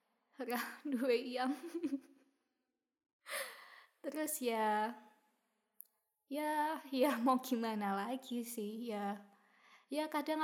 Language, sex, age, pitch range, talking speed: Indonesian, female, 20-39, 230-270 Hz, 75 wpm